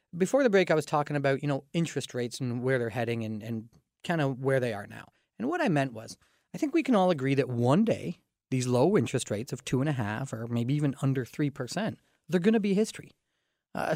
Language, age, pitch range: English, 30-49, 130-175 Hz